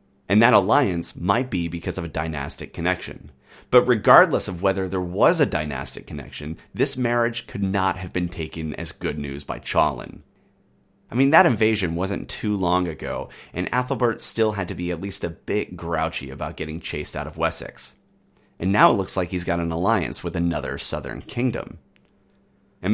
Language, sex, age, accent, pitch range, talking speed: English, male, 30-49, American, 80-115 Hz, 185 wpm